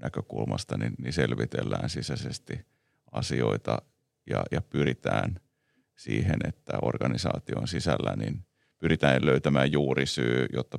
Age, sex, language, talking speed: 30-49, male, Finnish, 100 wpm